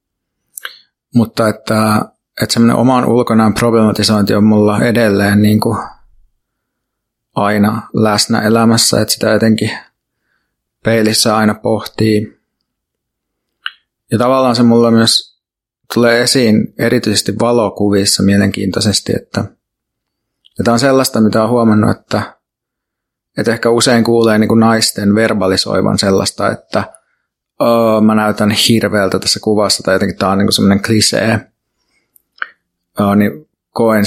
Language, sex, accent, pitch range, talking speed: Finnish, male, native, 100-115 Hz, 115 wpm